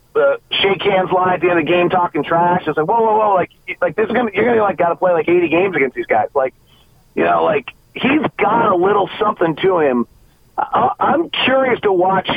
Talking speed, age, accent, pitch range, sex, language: 245 wpm, 40-59, American, 160-205 Hz, male, English